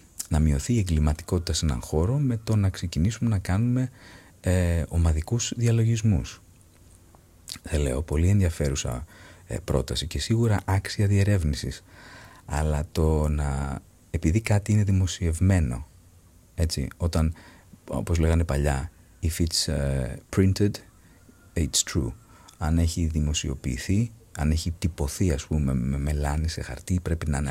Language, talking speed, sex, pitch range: Greek, 130 wpm, male, 75-95 Hz